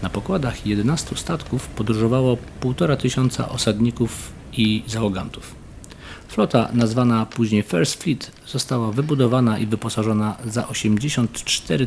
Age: 40-59